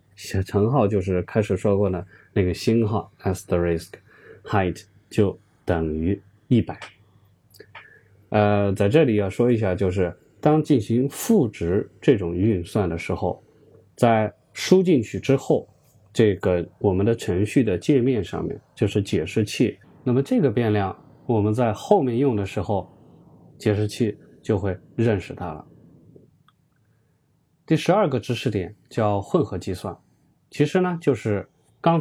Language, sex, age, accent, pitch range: Chinese, male, 20-39, native, 95-140 Hz